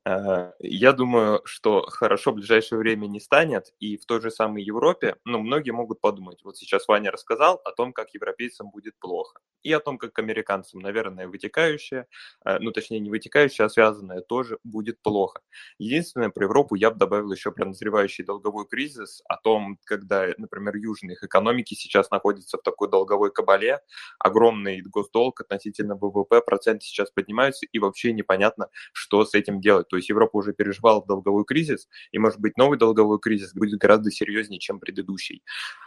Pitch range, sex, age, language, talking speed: 100-130 Hz, male, 20-39, Russian, 165 wpm